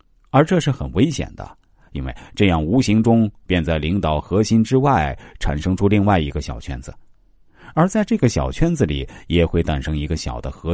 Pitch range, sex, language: 75-115 Hz, male, Chinese